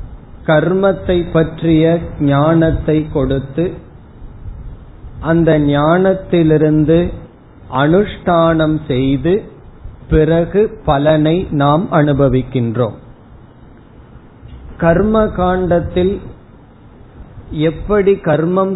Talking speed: 50 wpm